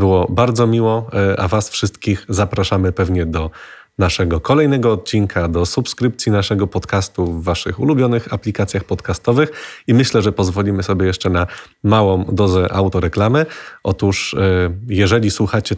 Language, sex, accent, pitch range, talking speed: Polish, male, native, 90-105 Hz, 130 wpm